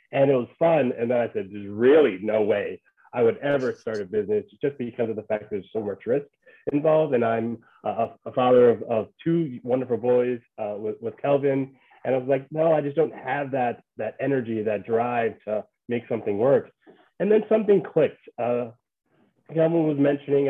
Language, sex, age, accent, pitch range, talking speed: English, male, 30-49, American, 115-155 Hz, 200 wpm